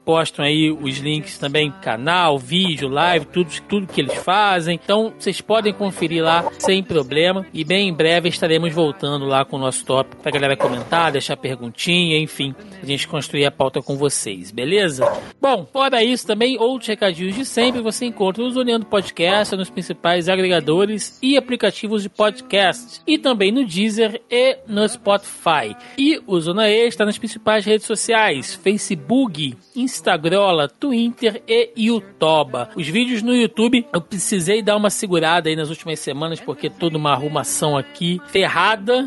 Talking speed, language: 165 wpm, Portuguese